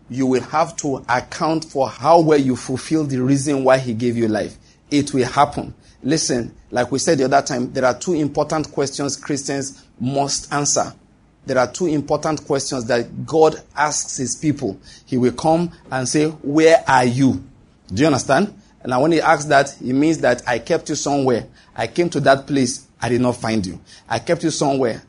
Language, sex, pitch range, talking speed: English, male, 125-160 Hz, 200 wpm